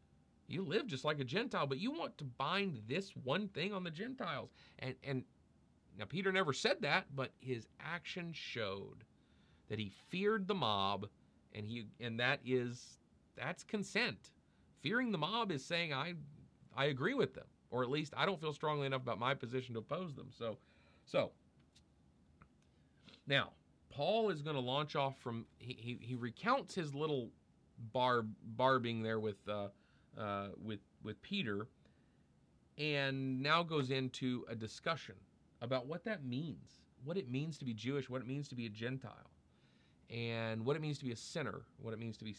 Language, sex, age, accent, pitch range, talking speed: English, male, 40-59, American, 110-155 Hz, 180 wpm